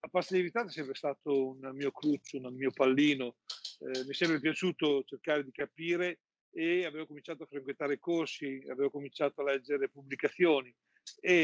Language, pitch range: Italian, 145-175 Hz